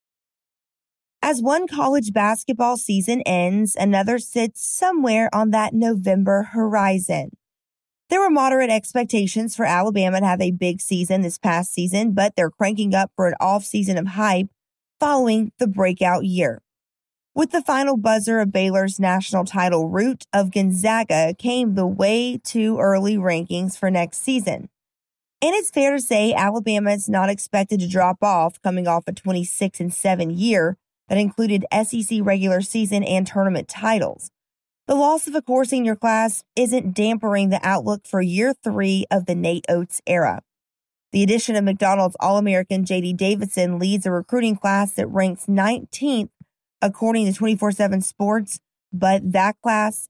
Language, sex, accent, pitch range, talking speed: English, female, American, 190-225 Hz, 150 wpm